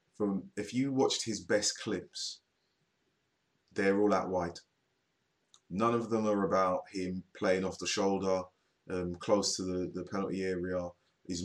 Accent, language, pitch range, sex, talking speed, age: British, English, 90-100 Hz, male, 150 wpm, 20-39